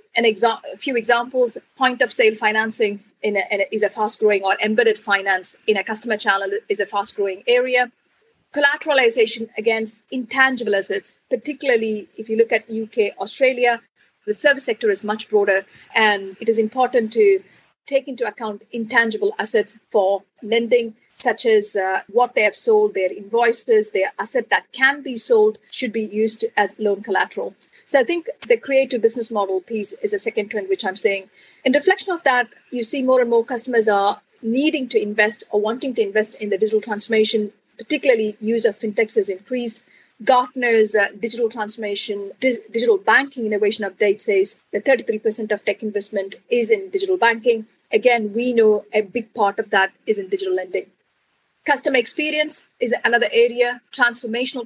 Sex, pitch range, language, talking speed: female, 215-260 Hz, English, 160 wpm